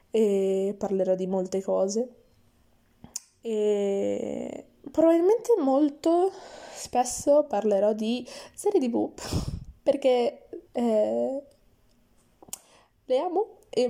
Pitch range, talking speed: 200-255 Hz, 80 wpm